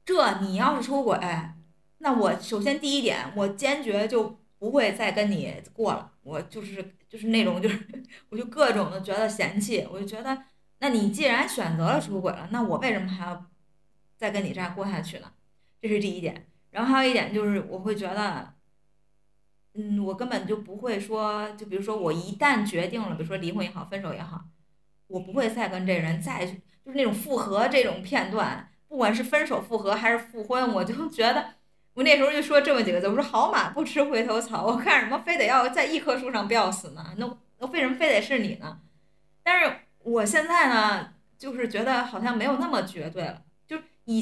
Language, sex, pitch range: Chinese, female, 190-255 Hz